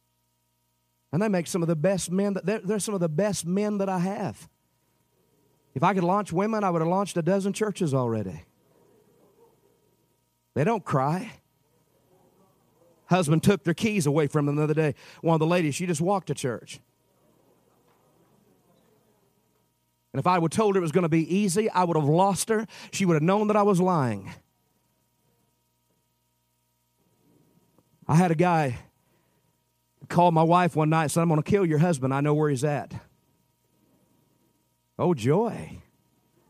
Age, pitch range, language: 40-59, 135-185 Hz, English